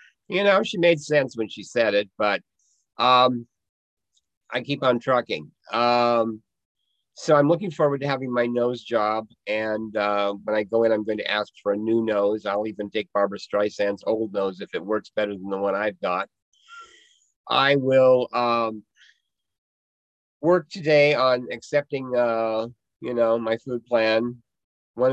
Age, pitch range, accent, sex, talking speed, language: 50-69, 100-120 Hz, American, male, 165 wpm, English